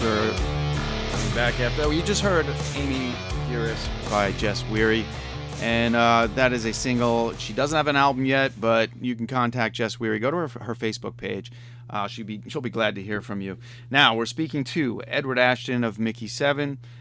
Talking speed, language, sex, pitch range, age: 195 wpm, English, male, 110-130 Hz, 30-49